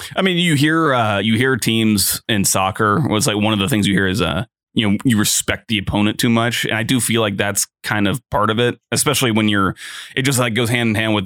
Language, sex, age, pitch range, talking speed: English, male, 20-39, 100-120 Hz, 265 wpm